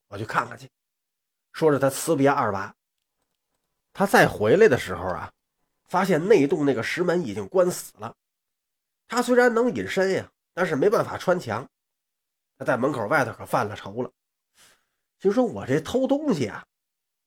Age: 30-49